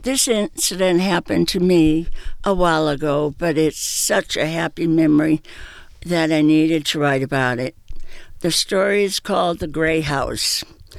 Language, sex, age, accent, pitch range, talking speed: English, female, 60-79, American, 150-175 Hz, 155 wpm